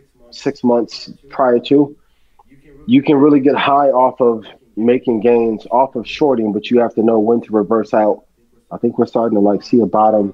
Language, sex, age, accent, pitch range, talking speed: English, male, 30-49, American, 105-125 Hz, 195 wpm